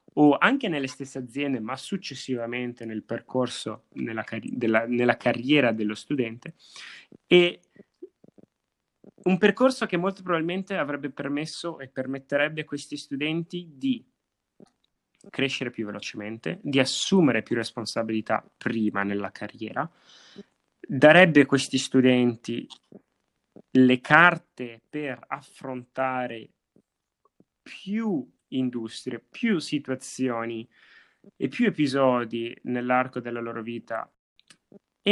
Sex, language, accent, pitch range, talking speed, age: male, Italian, native, 120-160 Hz, 100 wpm, 30-49